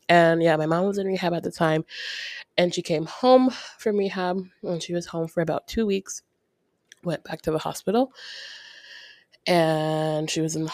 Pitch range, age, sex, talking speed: 160-190 Hz, 20-39, female, 190 wpm